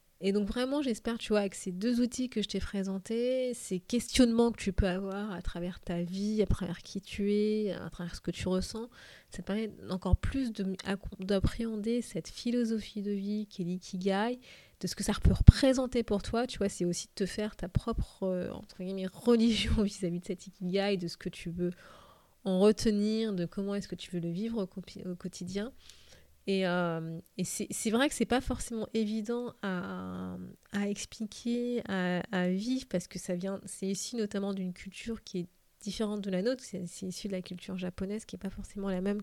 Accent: French